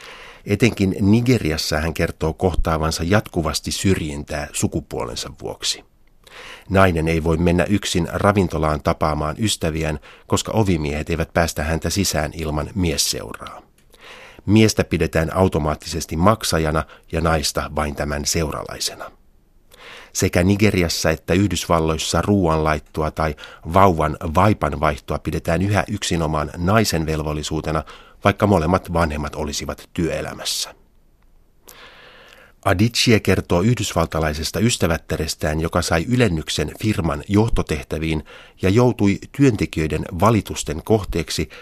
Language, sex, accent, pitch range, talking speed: Finnish, male, native, 75-100 Hz, 95 wpm